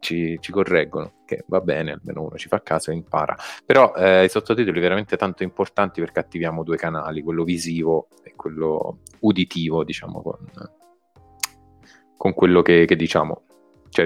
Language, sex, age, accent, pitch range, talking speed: Italian, male, 20-39, native, 85-95 Hz, 160 wpm